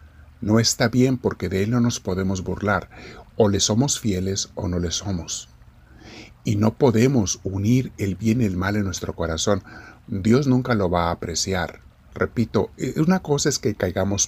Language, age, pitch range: Spanish, 50-69, 95-120 Hz